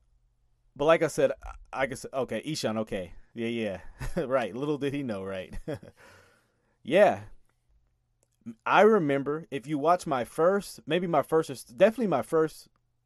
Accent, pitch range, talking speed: American, 110-155 Hz, 140 wpm